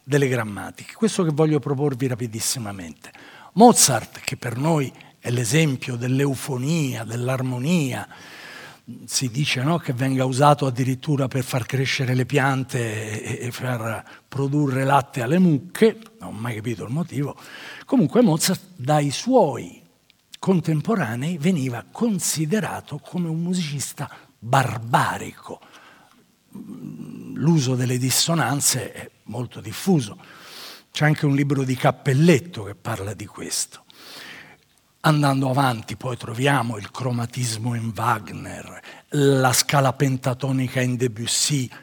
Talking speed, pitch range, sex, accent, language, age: 115 wpm, 125-165 Hz, male, native, Italian, 50-69